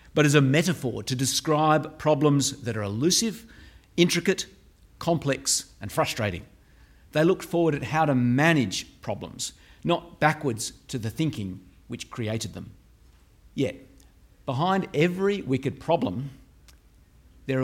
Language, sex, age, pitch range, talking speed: English, male, 50-69, 115-155 Hz, 125 wpm